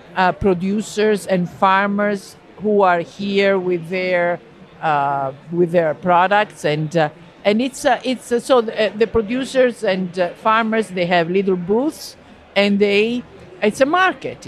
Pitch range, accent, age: 160-210 Hz, Italian, 50-69